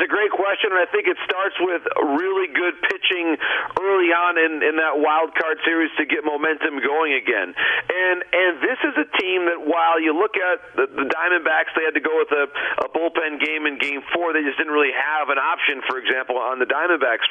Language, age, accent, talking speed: English, 50-69, American, 220 wpm